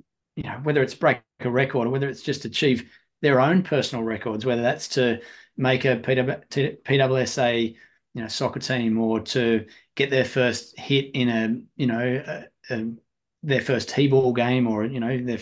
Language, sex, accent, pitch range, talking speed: English, male, Australian, 115-130 Hz, 180 wpm